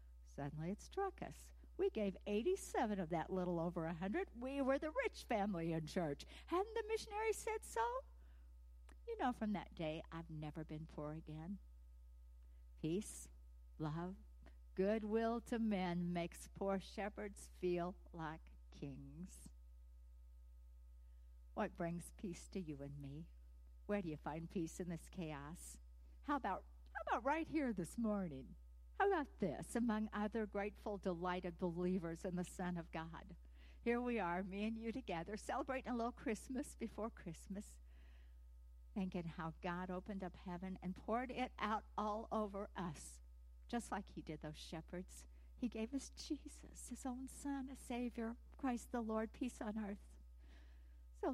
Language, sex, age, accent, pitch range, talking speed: English, female, 60-79, American, 135-220 Hz, 150 wpm